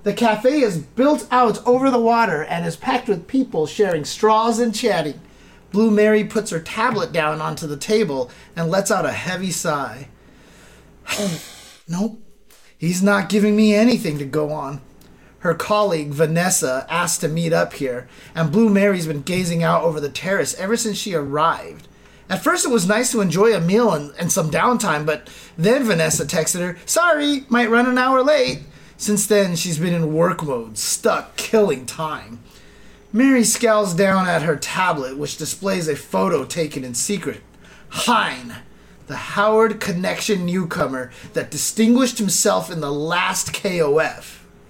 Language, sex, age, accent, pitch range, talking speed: English, male, 30-49, American, 160-220 Hz, 160 wpm